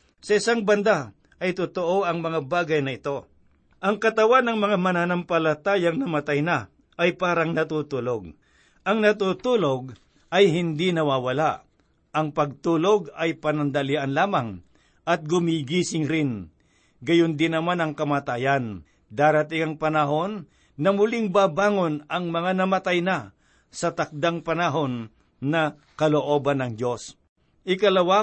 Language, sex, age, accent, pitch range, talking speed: Filipino, male, 50-69, native, 150-185 Hz, 115 wpm